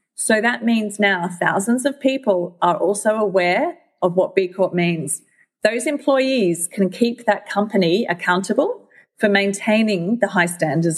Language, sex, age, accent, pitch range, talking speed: English, female, 30-49, Australian, 180-230 Hz, 150 wpm